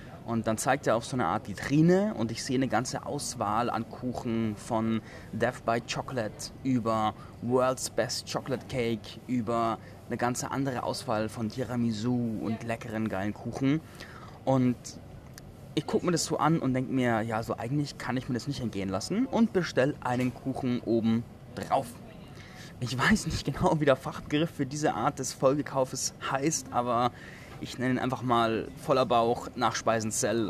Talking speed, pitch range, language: 165 wpm, 115-150 Hz, German